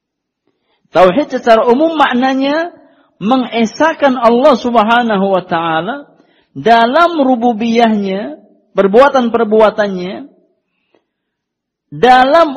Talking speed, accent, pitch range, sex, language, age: 60 wpm, native, 145-235 Hz, male, Indonesian, 50-69